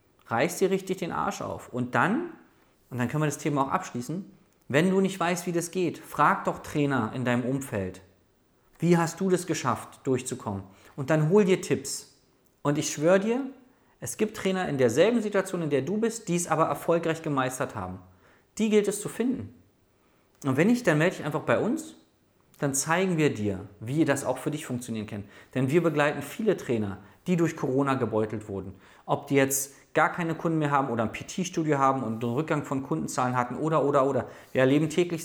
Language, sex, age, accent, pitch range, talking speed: German, male, 40-59, German, 125-170 Hz, 205 wpm